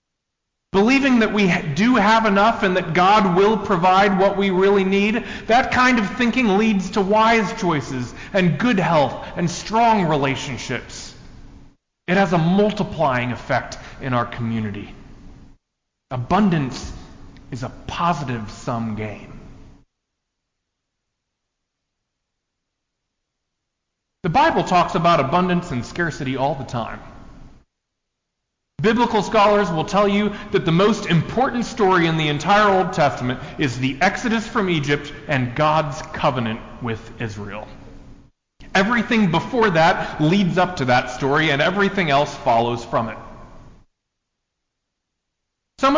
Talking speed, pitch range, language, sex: 120 wpm, 125-200 Hz, English, male